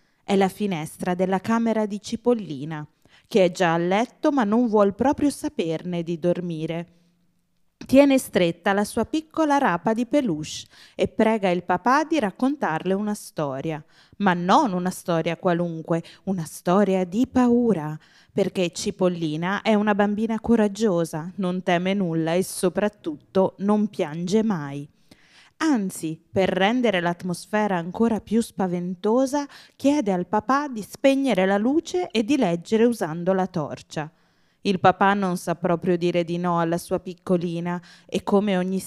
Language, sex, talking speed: Italian, female, 140 wpm